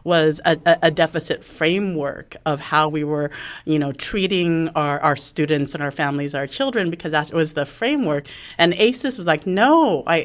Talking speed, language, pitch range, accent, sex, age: 180 wpm, English, 150-205 Hz, American, female, 40-59